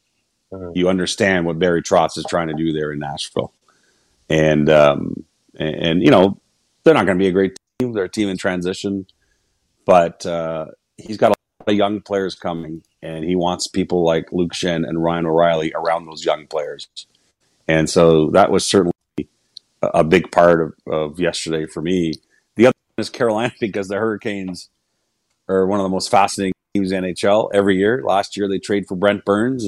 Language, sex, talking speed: English, male, 185 wpm